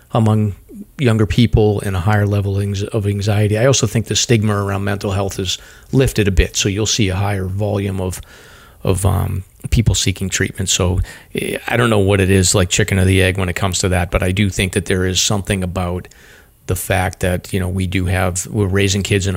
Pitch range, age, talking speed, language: 95-105 Hz, 40-59, 220 wpm, English